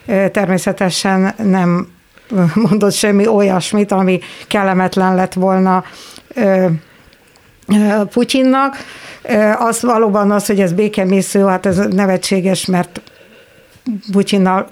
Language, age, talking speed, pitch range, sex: Hungarian, 60-79, 85 wpm, 190-220 Hz, female